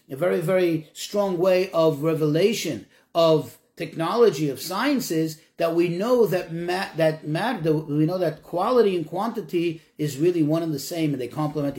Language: English